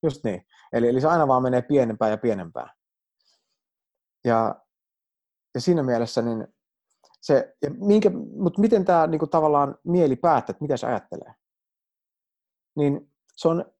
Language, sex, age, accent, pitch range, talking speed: Finnish, male, 30-49, native, 110-145 Hz, 145 wpm